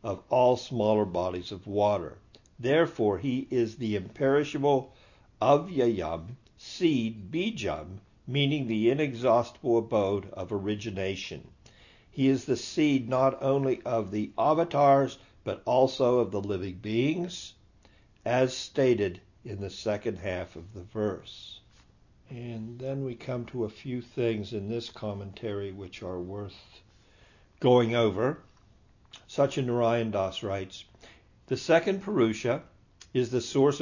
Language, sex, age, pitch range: English, male, 60-79, 100-130 Hz